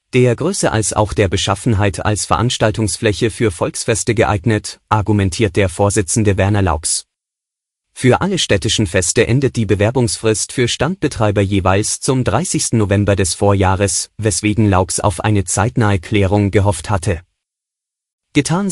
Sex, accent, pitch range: male, German, 100-120 Hz